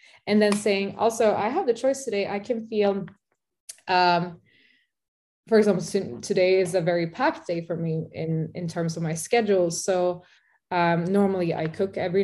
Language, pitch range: English, 165-195 Hz